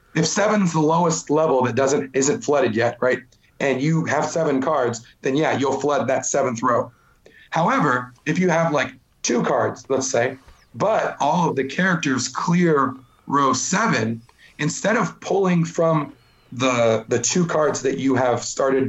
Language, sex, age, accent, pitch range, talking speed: English, male, 40-59, American, 130-160 Hz, 165 wpm